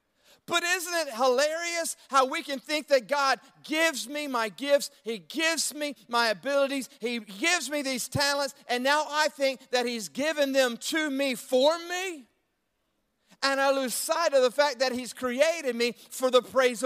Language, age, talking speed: English, 40-59, 180 wpm